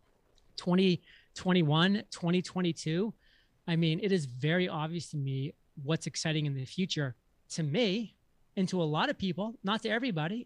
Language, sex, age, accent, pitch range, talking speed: English, male, 30-49, American, 150-190 Hz, 150 wpm